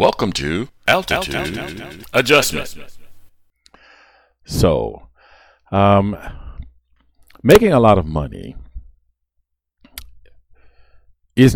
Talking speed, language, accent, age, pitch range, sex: 60 wpm, English, American, 50-69, 65-95 Hz, male